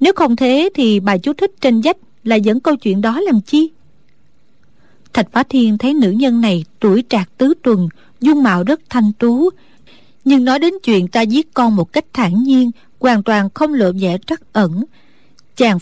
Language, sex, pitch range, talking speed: Vietnamese, female, 220-280 Hz, 195 wpm